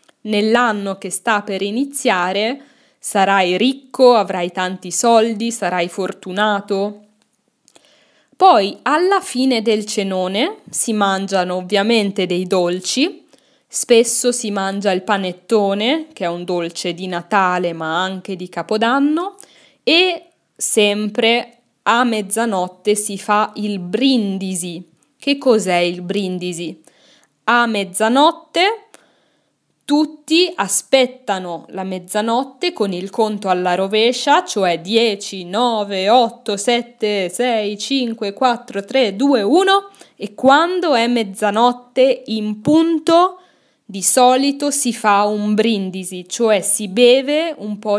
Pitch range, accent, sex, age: 190-255 Hz, native, female, 10-29